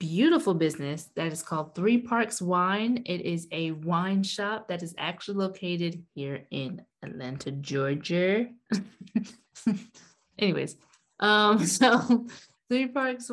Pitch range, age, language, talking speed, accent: 170-215 Hz, 20-39, English, 115 wpm, American